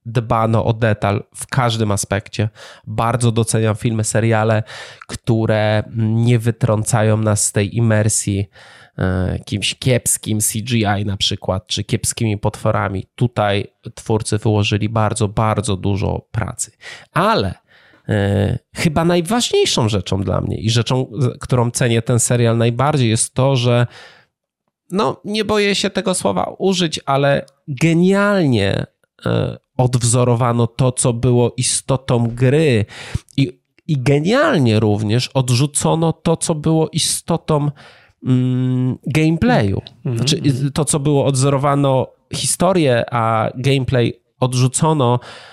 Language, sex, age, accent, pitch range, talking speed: Polish, male, 20-39, native, 110-140 Hz, 105 wpm